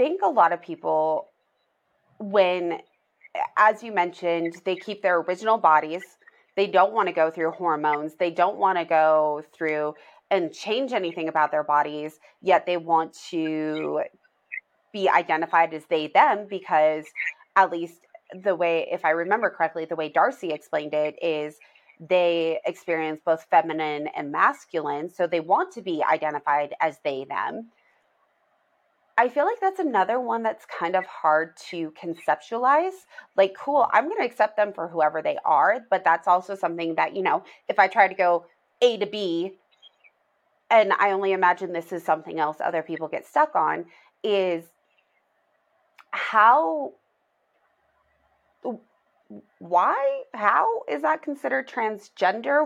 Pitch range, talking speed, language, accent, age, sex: 160-205 Hz, 150 wpm, English, American, 30-49, female